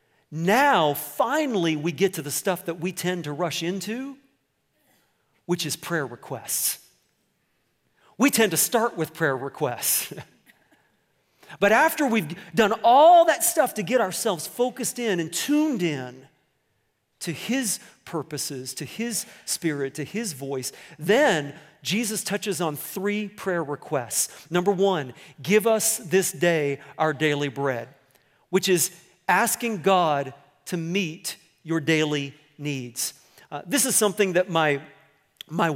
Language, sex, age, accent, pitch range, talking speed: English, male, 40-59, American, 145-205 Hz, 135 wpm